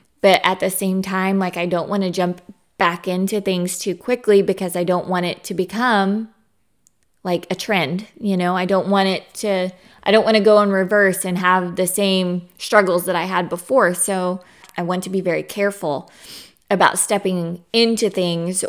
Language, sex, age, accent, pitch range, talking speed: English, female, 20-39, American, 170-195 Hz, 195 wpm